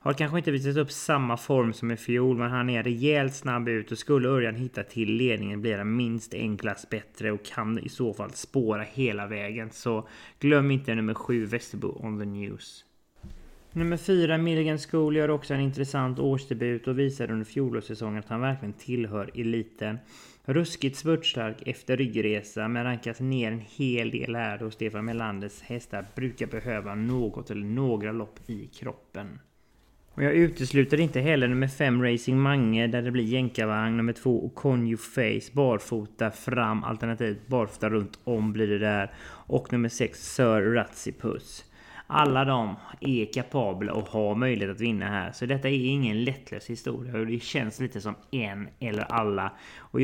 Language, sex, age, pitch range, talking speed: English, male, 20-39, 110-135 Hz, 170 wpm